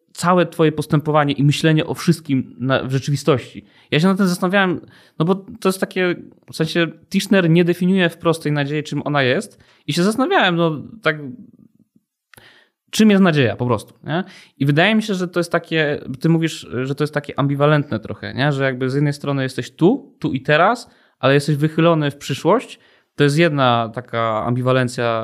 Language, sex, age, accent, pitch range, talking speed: Polish, male, 20-39, native, 125-165 Hz, 185 wpm